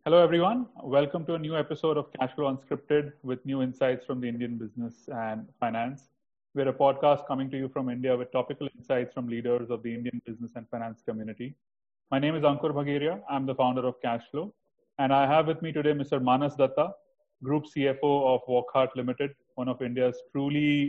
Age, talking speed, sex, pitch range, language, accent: 30-49, 190 wpm, male, 120-145 Hz, English, Indian